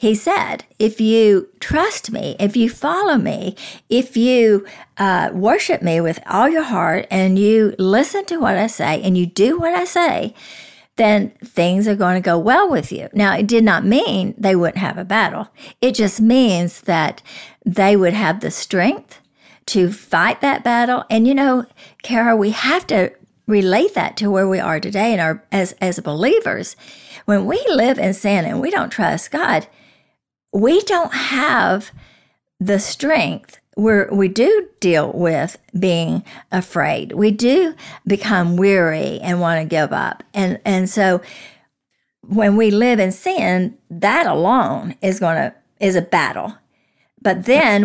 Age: 50-69